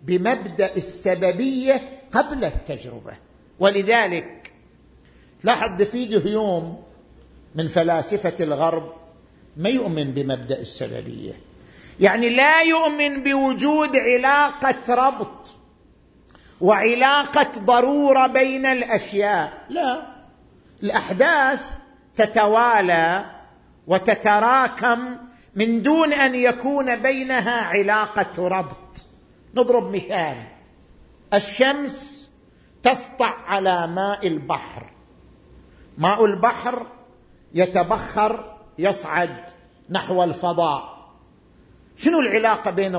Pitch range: 180-260 Hz